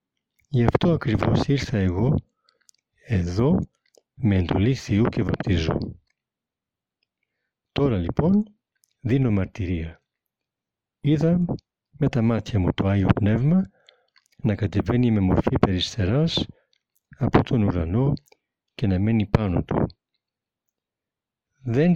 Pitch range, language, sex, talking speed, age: 95-130 Hz, Greek, male, 100 wpm, 60-79